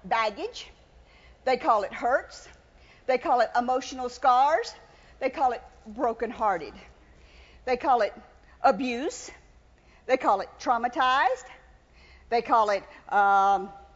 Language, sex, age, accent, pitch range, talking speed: English, female, 50-69, American, 230-350 Hz, 110 wpm